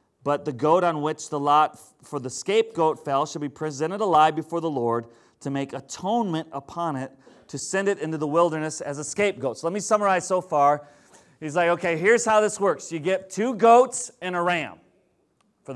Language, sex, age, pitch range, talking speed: English, male, 30-49, 145-185 Hz, 200 wpm